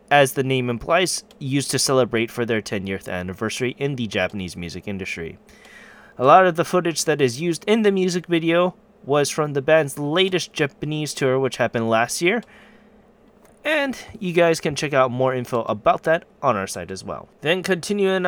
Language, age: English, 20-39